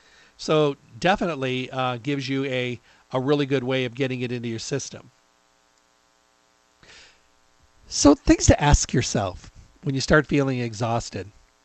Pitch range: 115-150 Hz